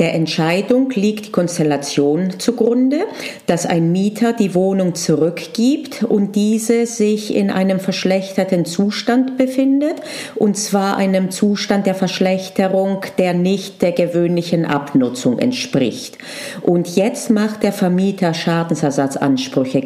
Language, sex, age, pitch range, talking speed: German, female, 40-59, 170-235 Hz, 115 wpm